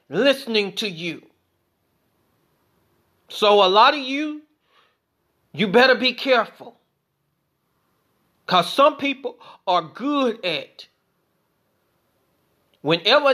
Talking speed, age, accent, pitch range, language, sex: 85 wpm, 30-49, American, 170-255 Hz, English, male